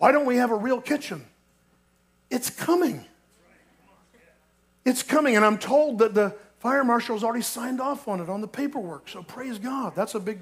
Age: 50-69